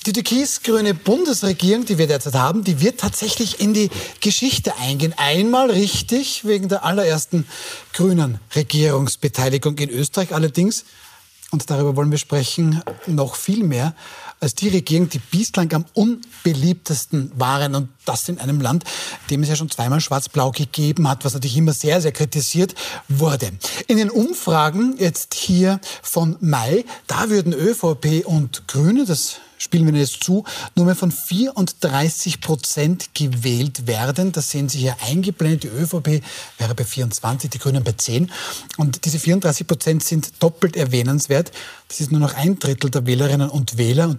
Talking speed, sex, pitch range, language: 160 wpm, male, 140-185 Hz, German